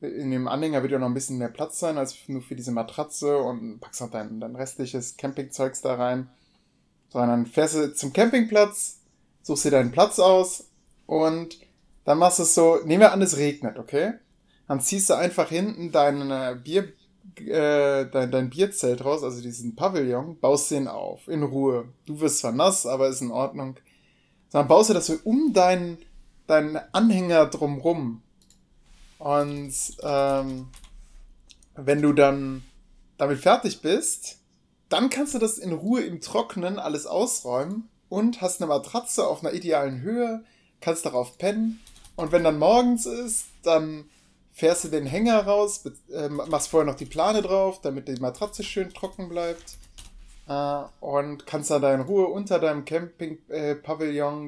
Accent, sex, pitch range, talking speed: German, male, 135-180 Hz, 165 wpm